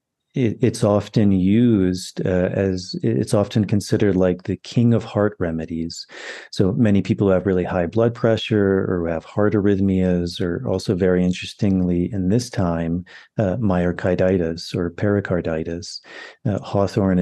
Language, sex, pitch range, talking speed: English, male, 90-105 Hz, 140 wpm